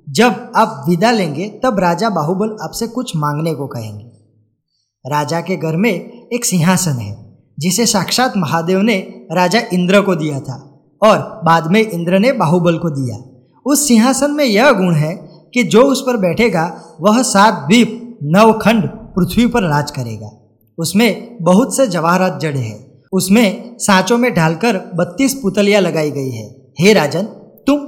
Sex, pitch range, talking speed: male, 150-220 Hz, 155 wpm